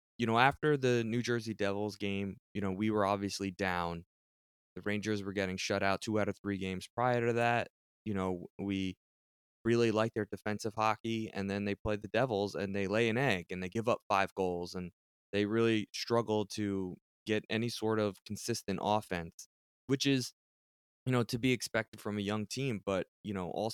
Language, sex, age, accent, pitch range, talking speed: English, male, 20-39, American, 95-115 Hz, 200 wpm